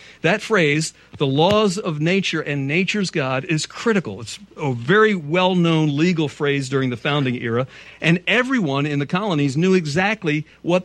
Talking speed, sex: 160 wpm, male